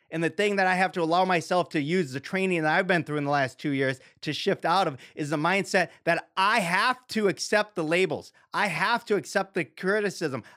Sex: male